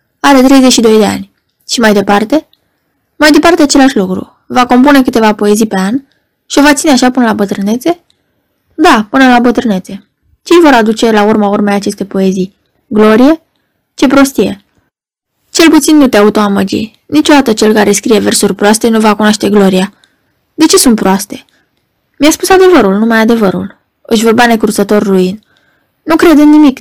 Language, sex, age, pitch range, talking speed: Romanian, female, 20-39, 210-275 Hz, 160 wpm